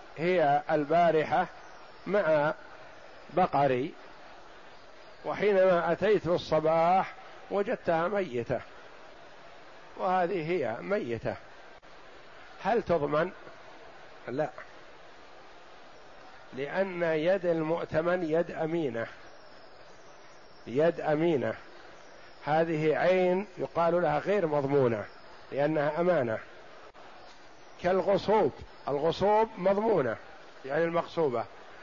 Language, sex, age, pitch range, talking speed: Arabic, male, 50-69, 150-190 Hz, 65 wpm